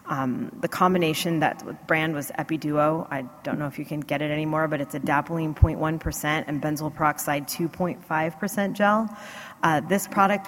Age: 30-49